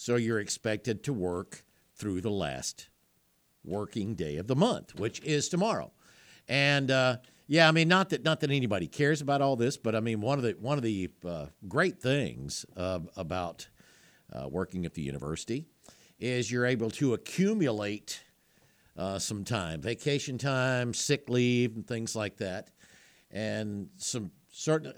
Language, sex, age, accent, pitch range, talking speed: English, male, 60-79, American, 105-145 Hz, 165 wpm